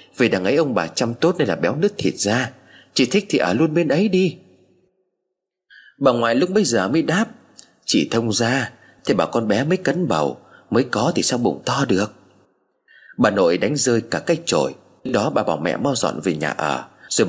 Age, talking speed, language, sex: 30-49, 215 wpm, Vietnamese, male